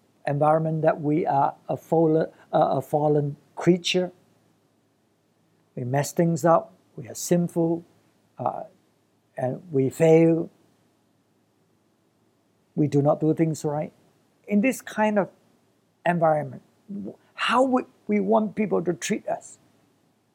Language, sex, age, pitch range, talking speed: English, male, 60-79, 145-180 Hz, 115 wpm